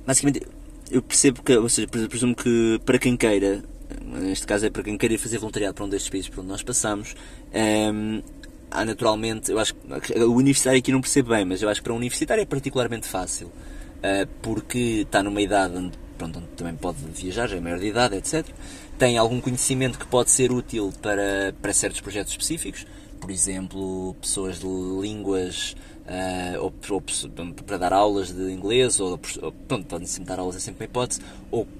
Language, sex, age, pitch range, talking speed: Portuguese, male, 20-39, 95-120 Hz, 195 wpm